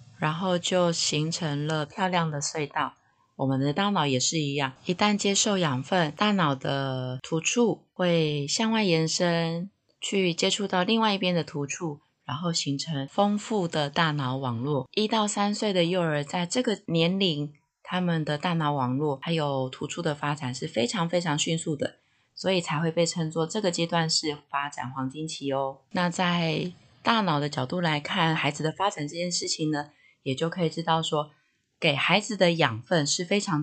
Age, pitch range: 20-39, 145-180 Hz